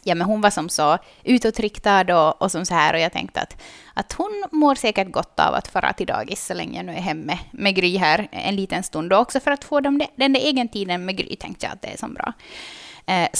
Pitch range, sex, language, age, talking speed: 175-240 Hz, female, Swedish, 20-39, 260 wpm